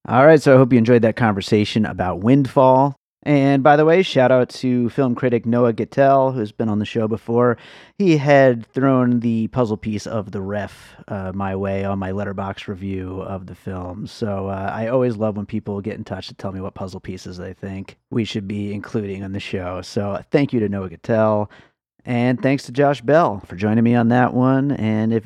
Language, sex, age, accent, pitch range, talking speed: English, male, 30-49, American, 105-135 Hz, 215 wpm